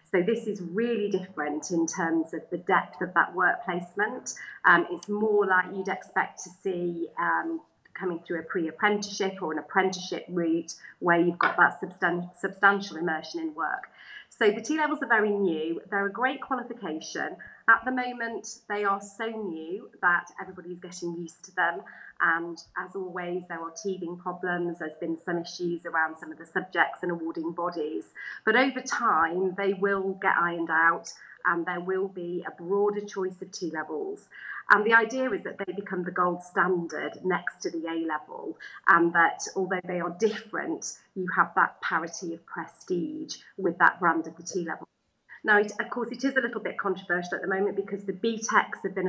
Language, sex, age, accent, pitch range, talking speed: English, female, 30-49, British, 170-205 Hz, 180 wpm